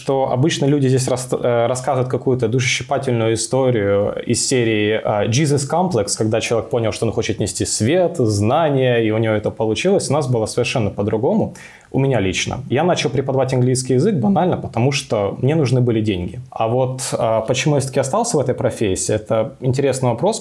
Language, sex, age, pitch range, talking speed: Ukrainian, male, 20-39, 120-140 Hz, 180 wpm